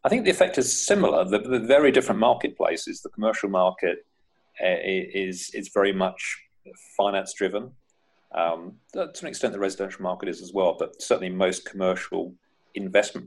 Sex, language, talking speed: male, English, 165 wpm